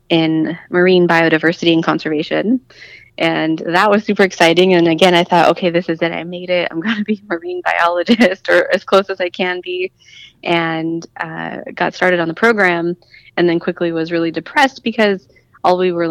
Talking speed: 190 wpm